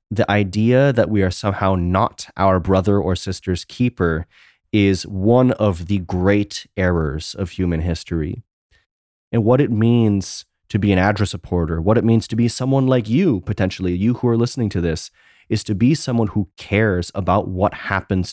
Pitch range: 90-115 Hz